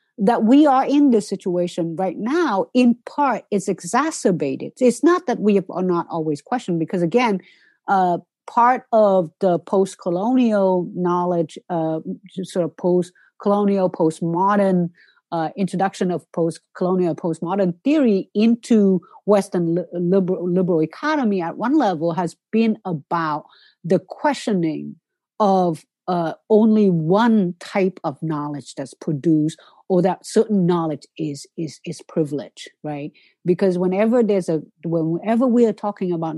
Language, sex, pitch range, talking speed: English, female, 170-220 Hz, 130 wpm